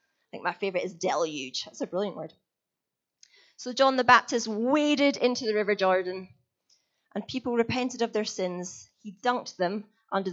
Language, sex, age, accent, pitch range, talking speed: English, female, 30-49, British, 175-230 Hz, 170 wpm